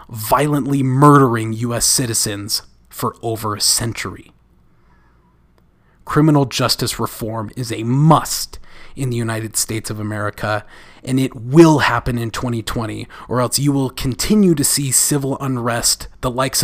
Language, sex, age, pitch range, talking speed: English, male, 30-49, 105-125 Hz, 135 wpm